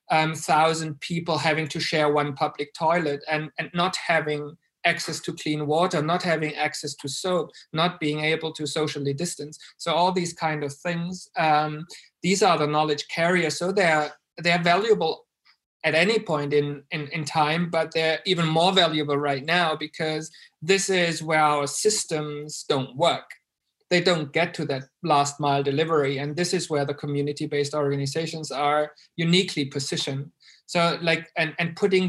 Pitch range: 150-170 Hz